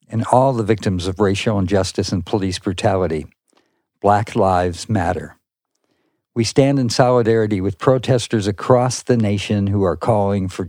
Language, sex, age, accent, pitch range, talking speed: English, male, 50-69, American, 95-120 Hz, 145 wpm